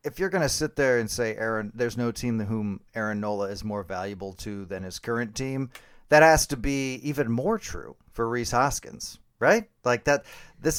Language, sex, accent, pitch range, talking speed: English, male, American, 105-140 Hz, 210 wpm